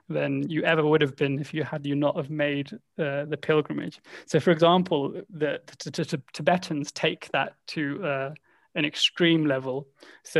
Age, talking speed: 20-39, 190 wpm